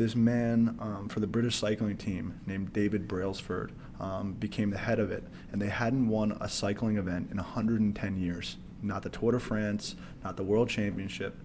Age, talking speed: 20-39, 190 wpm